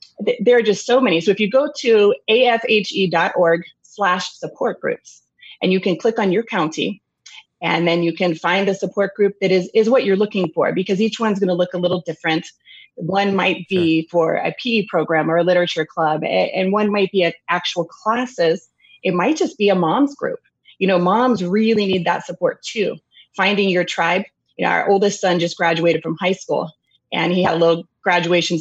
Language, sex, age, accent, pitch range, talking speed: English, female, 30-49, American, 170-210 Hz, 205 wpm